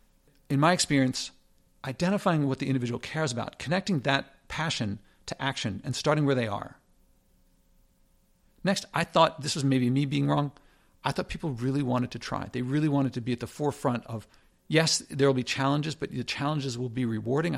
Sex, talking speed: male, 190 wpm